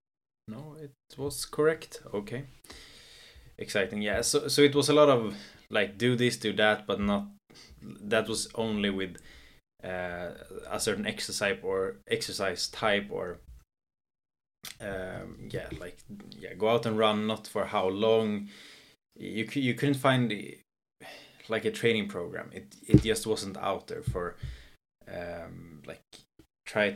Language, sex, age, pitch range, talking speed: English, male, 20-39, 100-125 Hz, 140 wpm